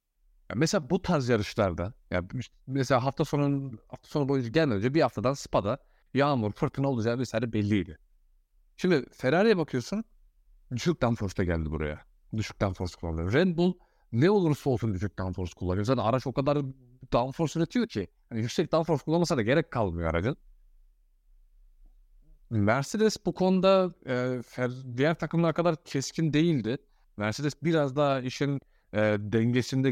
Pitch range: 110-150 Hz